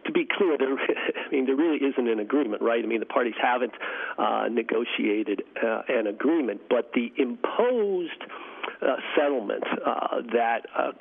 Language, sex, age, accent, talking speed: English, male, 50-69, American, 165 wpm